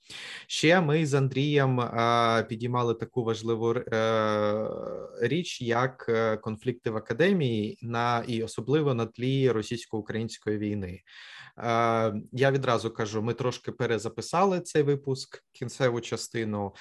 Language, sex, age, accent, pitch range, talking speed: Ukrainian, male, 20-39, native, 110-130 Hz, 110 wpm